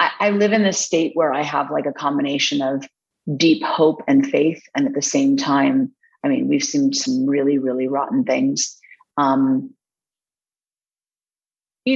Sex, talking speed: female, 160 wpm